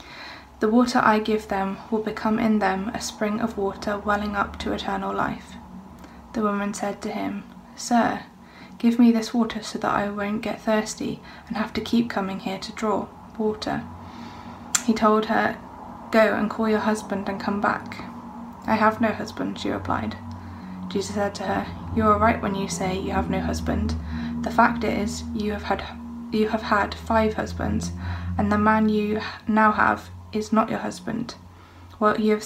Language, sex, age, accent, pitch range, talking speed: English, female, 20-39, British, 200-220 Hz, 180 wpm